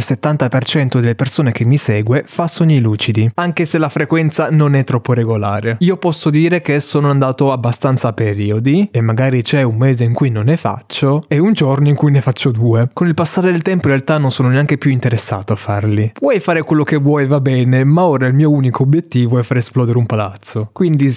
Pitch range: 120-150 Hz